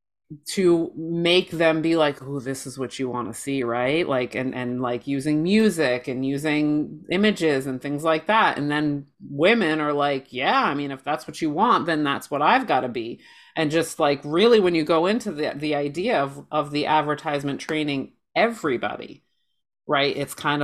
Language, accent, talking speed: English, American, 195 wpm